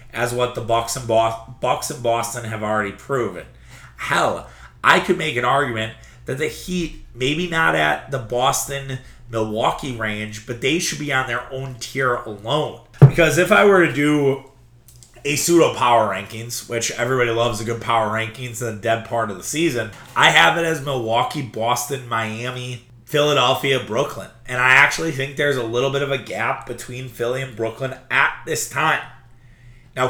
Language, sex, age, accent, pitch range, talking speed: English, male, 30-49, American, 115-135 Hz, 170 wpm